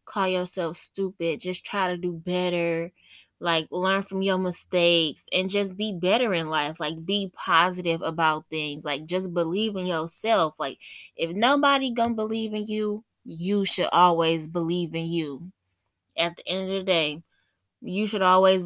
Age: 20-39